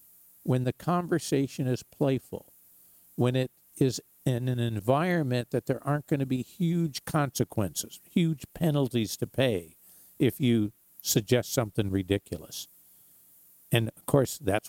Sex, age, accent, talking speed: male, 50-69, American, 130 wpm